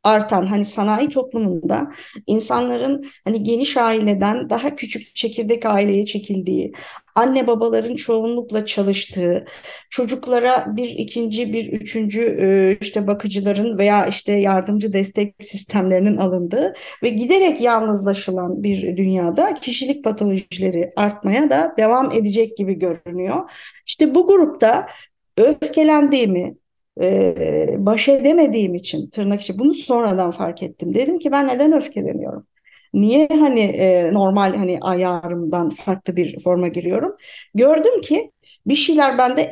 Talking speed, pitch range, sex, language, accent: 115 wpm, 200-285 Hz, female, Turkish, native